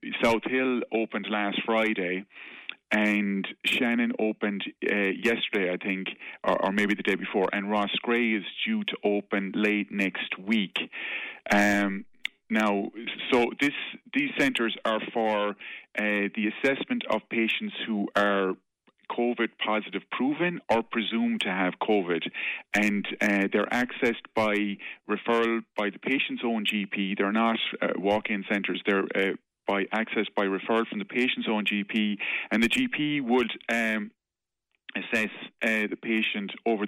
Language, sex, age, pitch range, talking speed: English, male, 30-49, 100-115 Hz, 140 wpm